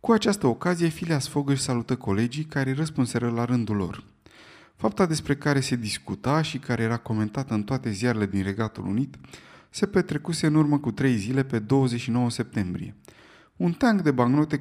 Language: Romanian